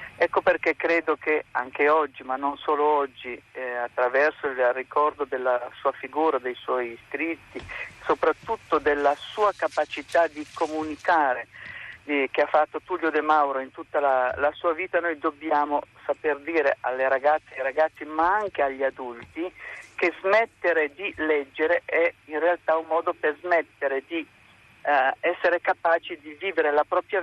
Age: 50-69